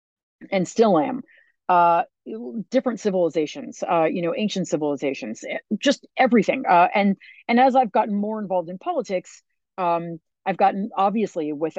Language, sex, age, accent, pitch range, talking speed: English, female, 40-59, American, 160-215 Hz, 145 wpm